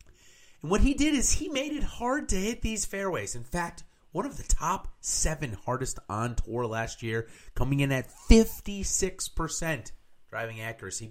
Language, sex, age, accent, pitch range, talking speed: English, male, 30-49, American, 105-170 Hz, 165 wpm